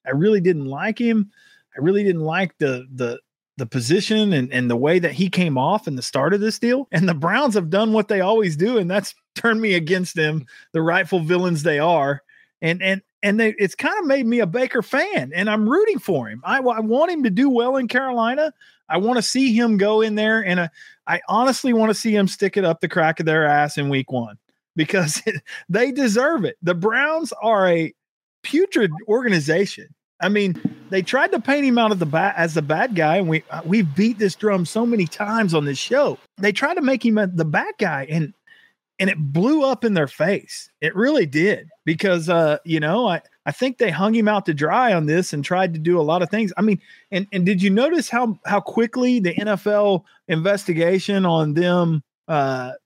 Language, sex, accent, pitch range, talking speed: English, male, American, 165-230 Hz, 220 wpm